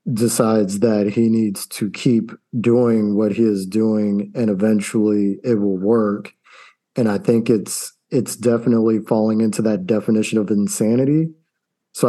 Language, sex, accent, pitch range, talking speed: English, male, American, 105-125 Hz, 145 wpm